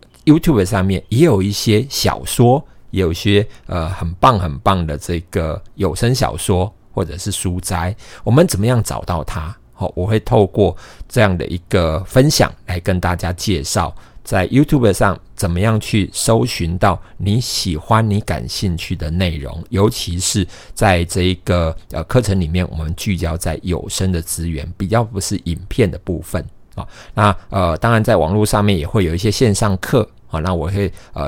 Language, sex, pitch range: Chinese, male, 85-105 Hz